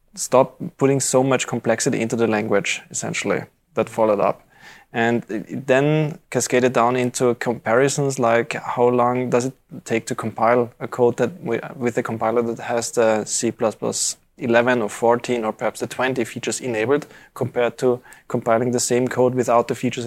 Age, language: 20-39, English